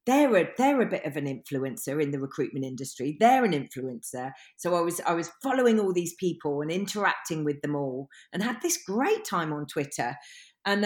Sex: female